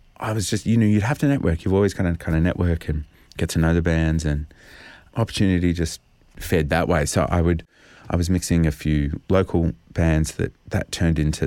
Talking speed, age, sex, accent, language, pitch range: 220 wpm, 30-49, male, Australian, English, 75-90 Hz